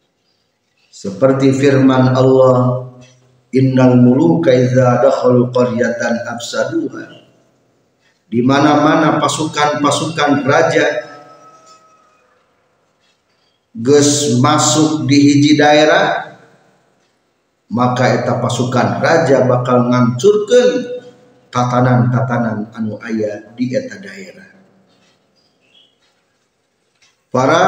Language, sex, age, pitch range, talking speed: Indonesian, male, 50-69, 120-155 Hz, 55 wpm